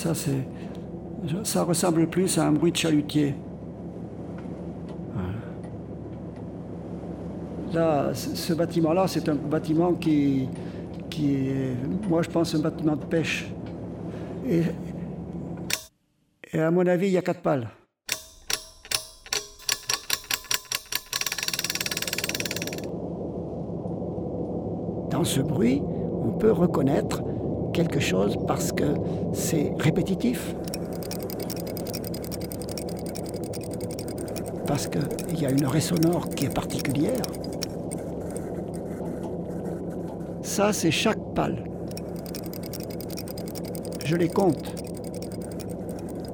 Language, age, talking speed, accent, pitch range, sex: French, 60-79, 80 wpm, French, 155-175 Hz, male